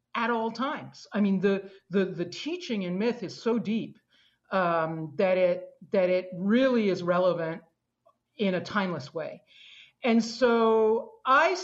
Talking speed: 150 wpm